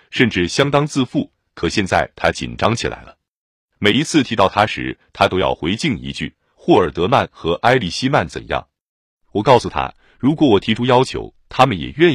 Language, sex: Chinese, male